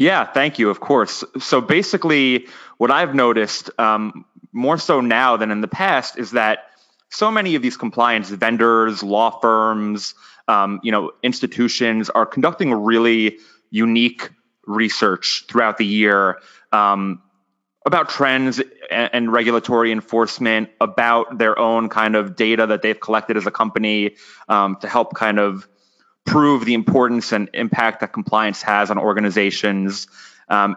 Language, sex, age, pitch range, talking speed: English, male, 30-49, 105-120 Hz, 150 wpm